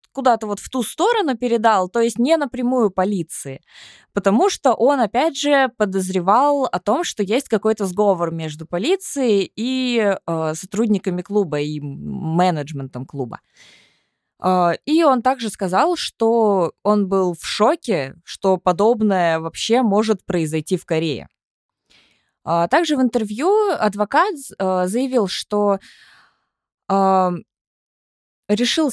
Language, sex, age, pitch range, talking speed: Russian, female, 20-39, 185-270 Hz, 115 wpm